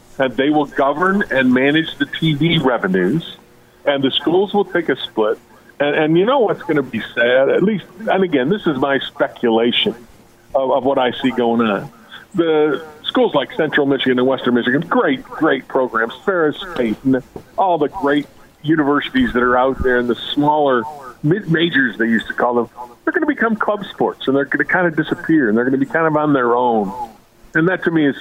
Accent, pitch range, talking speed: American, 120-150 Hz, 210 wpm